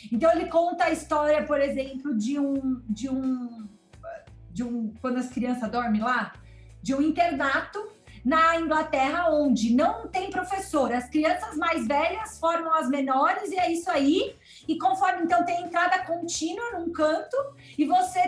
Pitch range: 255-335 Hz